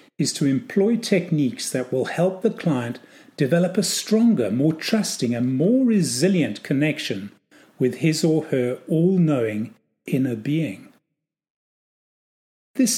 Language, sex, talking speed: English, male, 120 wpm